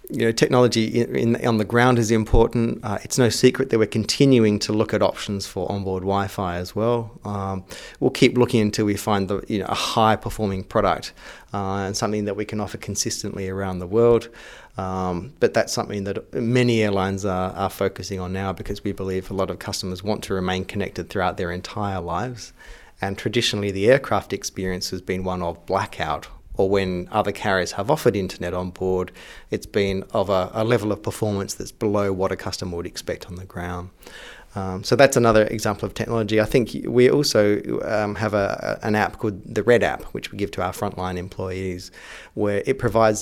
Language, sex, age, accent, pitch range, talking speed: English, male, 30-49, Australian, 95-110 Hz, 200 wpm